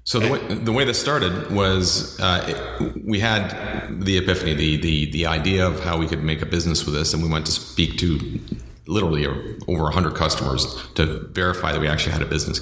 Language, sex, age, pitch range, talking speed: English, male, 40-59, 75-90 Hz, 215 wpm